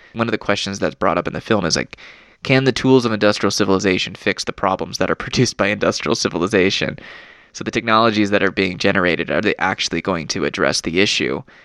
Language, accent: English, American